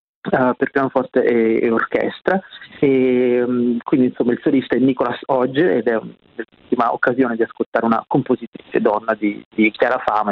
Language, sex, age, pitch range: Italian, male, 30-49, 125-150 Hz